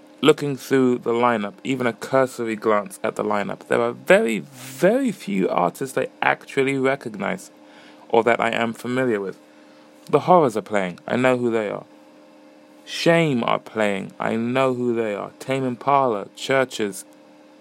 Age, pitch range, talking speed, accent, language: 20-39, 100-125 Hz, 155 wpm, British, English